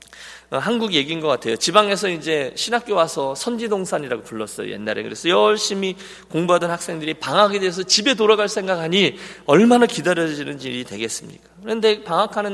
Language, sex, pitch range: Korean, male, 150-220 Hz